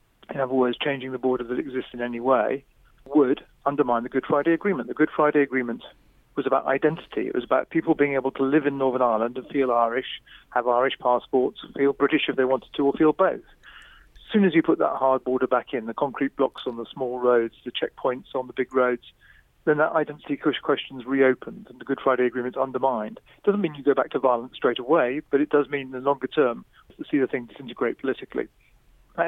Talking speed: 230 wpm